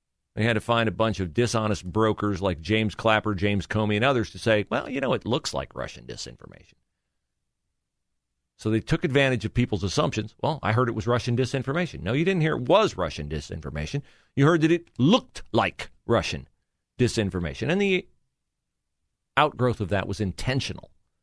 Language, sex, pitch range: English, male, 90-140 Hz